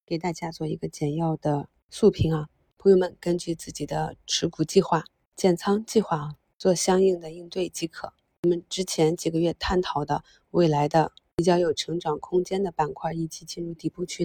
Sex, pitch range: female, 160-185 Hz